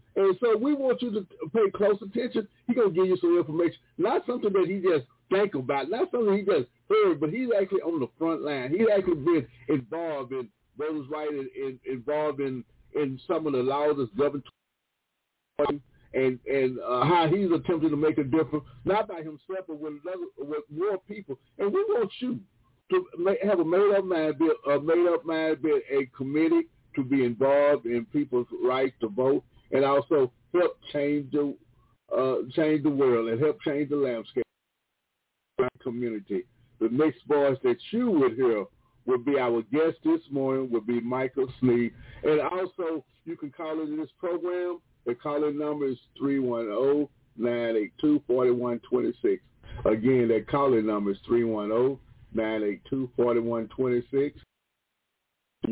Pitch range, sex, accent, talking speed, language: 125-175 Hz, male, American, 155 wpm, English